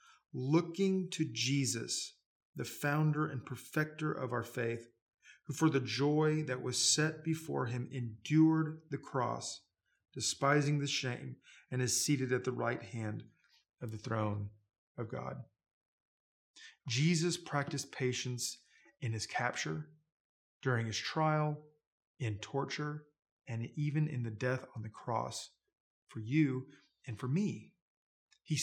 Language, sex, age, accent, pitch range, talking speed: English, male, 30-49, American, 120-150 Hz, 130 wpm